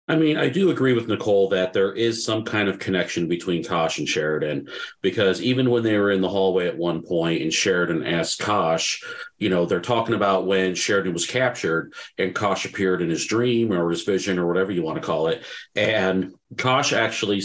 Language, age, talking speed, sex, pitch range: English, 40-59, 210 wpm, male, 85-105 Hz